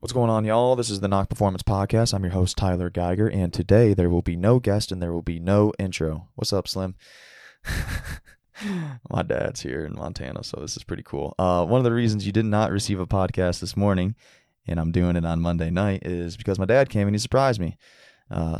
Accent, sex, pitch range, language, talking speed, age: American, male, 85-100 Hz, English, 230 wpm, 20-39